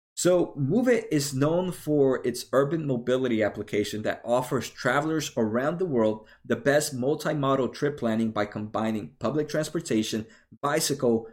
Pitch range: 120-150 Hz